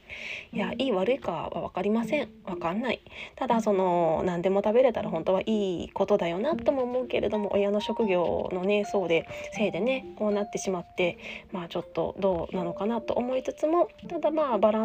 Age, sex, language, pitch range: 20-39, female, Japanese, 185-260 Hz